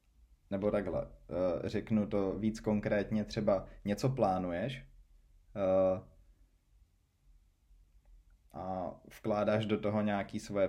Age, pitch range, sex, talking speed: 20-39, 80-110 Hz, male, 85 wpm